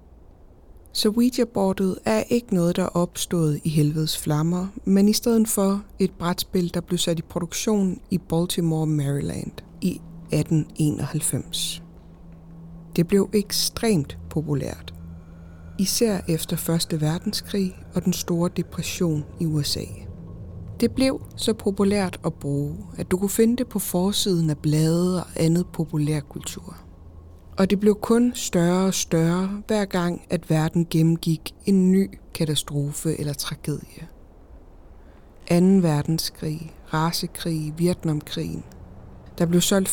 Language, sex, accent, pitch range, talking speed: Danish, female, native, 145-190 Hz, 125 wpm